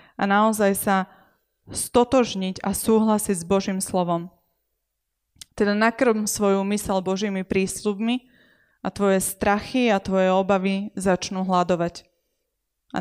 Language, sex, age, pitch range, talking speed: Slovak, female, 20-39, 185-210 Hz, 110 wpm